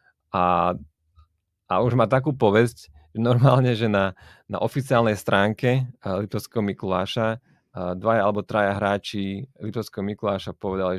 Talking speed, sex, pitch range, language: 120 wpm, male, 95-115 Hz, Slovak